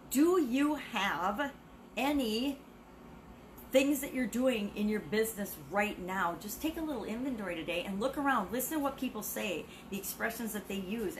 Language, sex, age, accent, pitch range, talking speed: English, female, 40-59, American, 185-240 Hz, 170 wpm